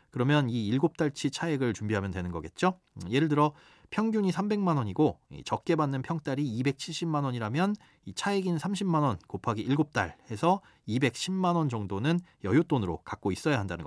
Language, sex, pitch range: Korean, male, 110-170 Hz